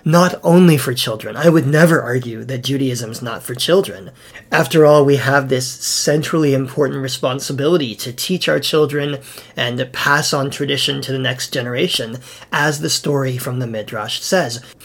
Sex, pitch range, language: male, 130-165 Hz, English